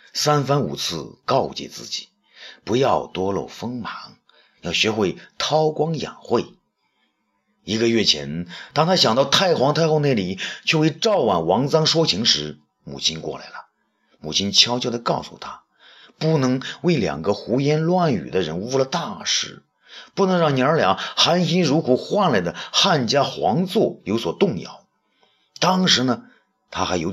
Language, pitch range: Chinese, 110-175 Hz